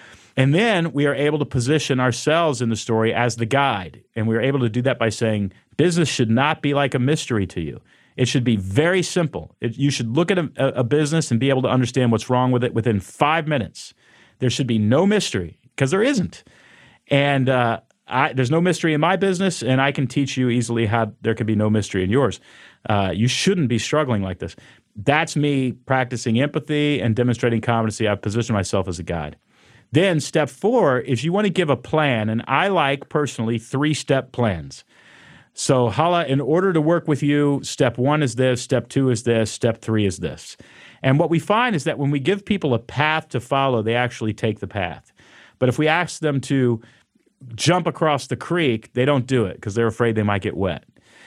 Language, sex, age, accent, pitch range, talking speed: English, male, 40-59, American, 115-150 Hz, 210 wpm